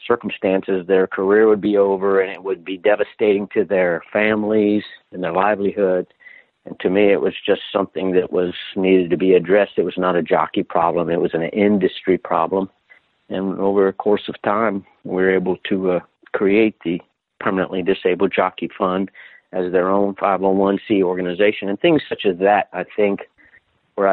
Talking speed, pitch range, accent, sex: 175 wpm, 95-105 Hz, American, male